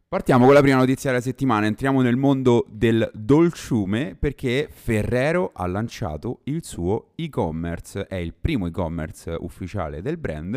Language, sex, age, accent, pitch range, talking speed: Italian, male, 30-49, native, 90-135 Hz, 150 wpm